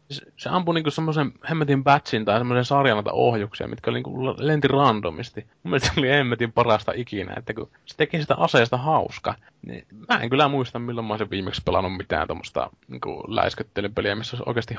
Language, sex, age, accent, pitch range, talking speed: Finnish, male, 20-39, native, 105-135 Hz, 175 wpm